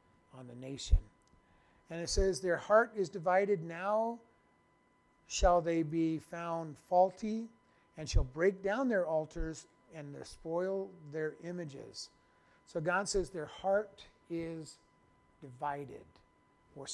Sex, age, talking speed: male, 50-69, 120 wpm